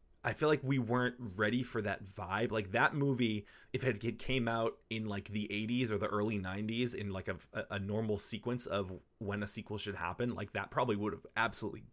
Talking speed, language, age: 215 wpm, English, 20-39